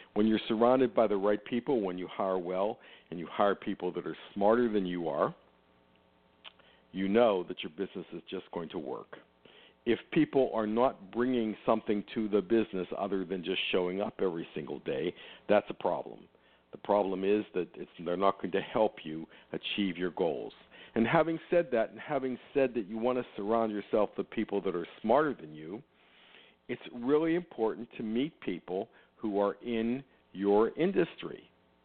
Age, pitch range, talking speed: 50-69, 90-115 Hz, 180 wpm